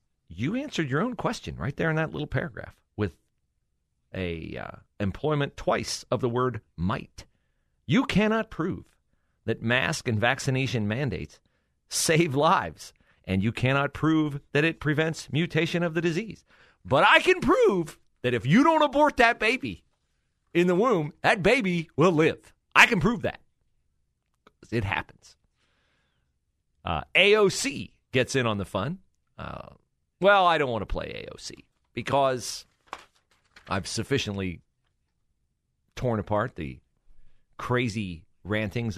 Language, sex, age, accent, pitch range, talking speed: English, male, 40-59, American, 95-150 Hz, 135 wpm